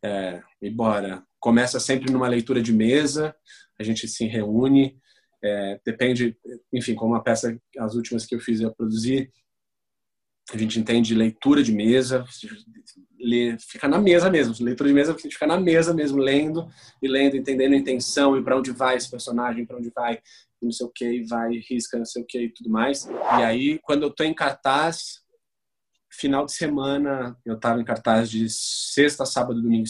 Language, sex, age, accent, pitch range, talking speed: Portuguese, male, 20-39, Brazilian, 115-135 Hz, 190 wpm